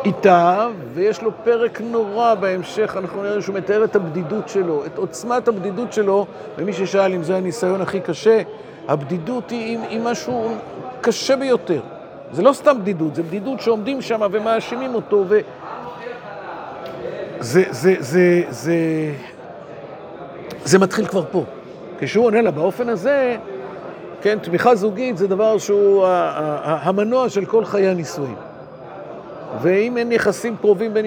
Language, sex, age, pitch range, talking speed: Hebrew, male, 50-69, 185-225 Hz, 145 wpm